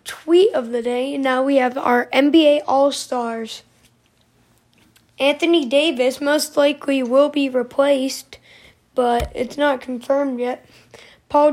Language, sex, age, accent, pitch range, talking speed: English, female, 10-29, American, 250-295 Hz, 125 wpm